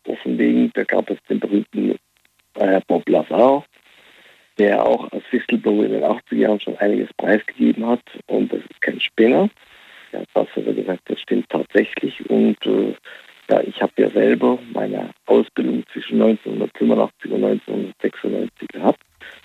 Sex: male